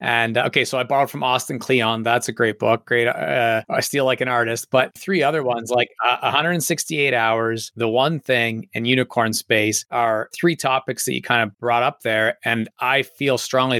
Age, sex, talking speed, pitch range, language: 30-49, male, 205 wpm, 115-130 Hz, English